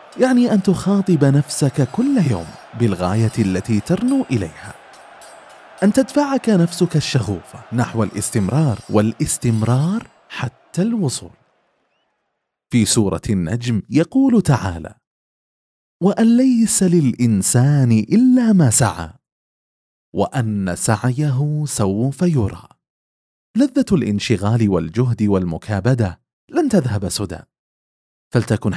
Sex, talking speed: male, 90 wpm